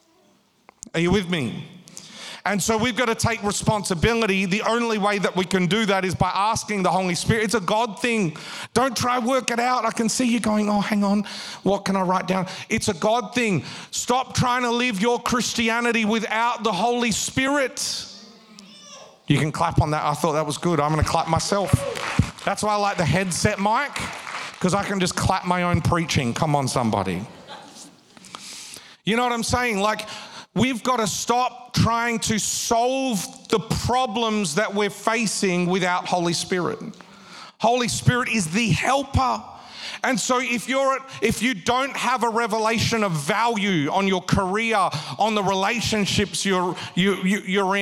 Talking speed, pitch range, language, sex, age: 180 wpm, 185-235 Hz, English, male, 40-59